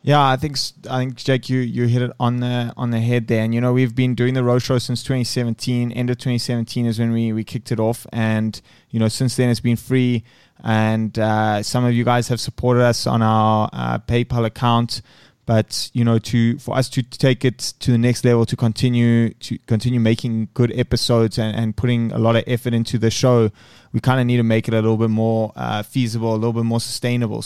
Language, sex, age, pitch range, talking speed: English, male, 20-39, 110-125 Hz, 235 wpm